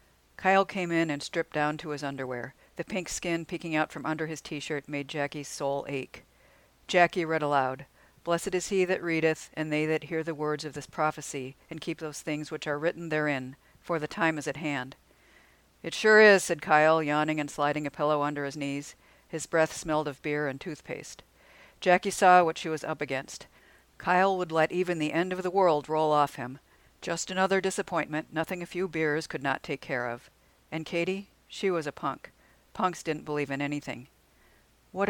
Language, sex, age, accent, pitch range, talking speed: English, female, 50-69, American, 145-170 Hz, 200 wpm